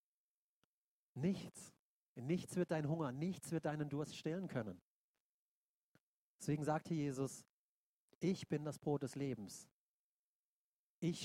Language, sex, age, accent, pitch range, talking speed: German, male, 30-49, German, 135-160 Hz, 125 wpm